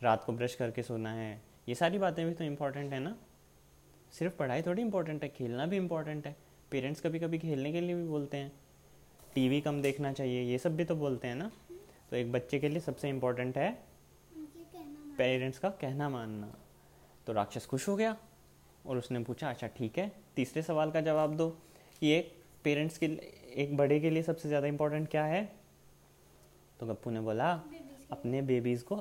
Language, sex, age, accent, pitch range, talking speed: Hindi, male, 20-39, native, 115-160 Hz, 190 wpm